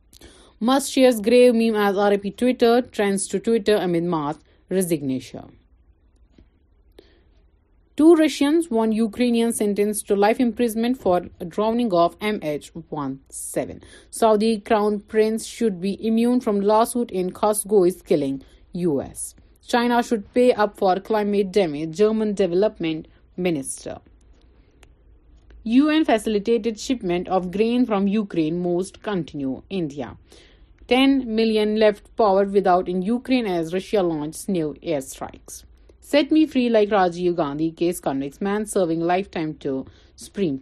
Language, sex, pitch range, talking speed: Urdu, female, 165-230 Hz, 125 wpm